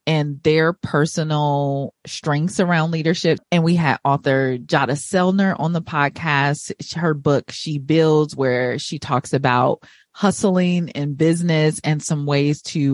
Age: 30-49